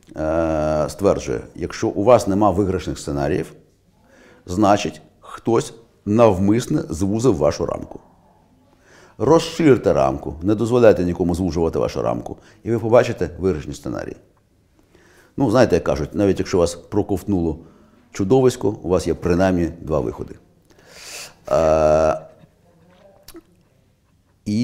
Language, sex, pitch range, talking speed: Ukrainian, male, 85-110 Hz, 105 wpm